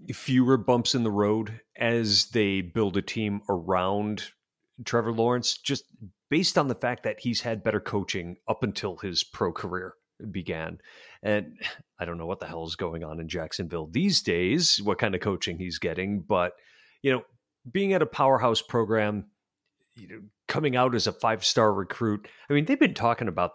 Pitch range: 100-135 Hz